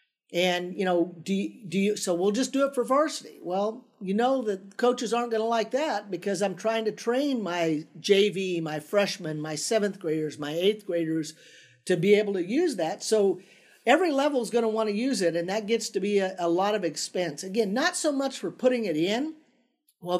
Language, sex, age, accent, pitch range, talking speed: English, male, 50-69, American, 170-220 Hz, 220 wpm